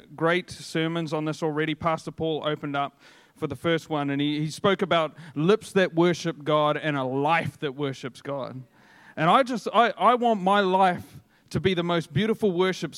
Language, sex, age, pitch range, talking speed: English, male, 40-59, 150-180 Hz, 195 wpm